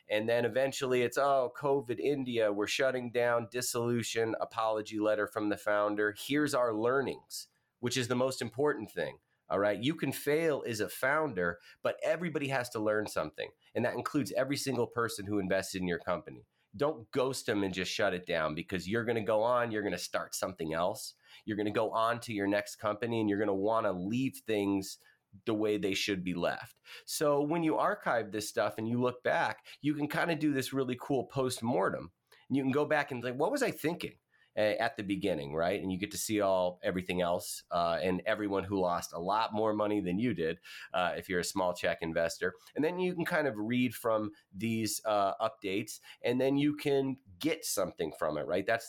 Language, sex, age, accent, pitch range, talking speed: English, male, 30-49, American, 100-130 Hz, 215 wpm